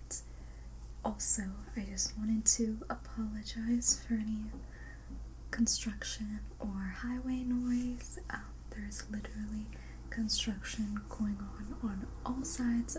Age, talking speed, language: 20-39, 100 wpm, English